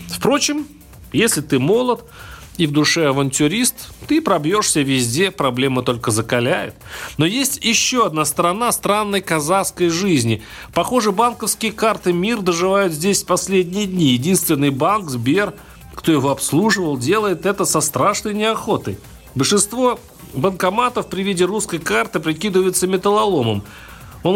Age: 40-59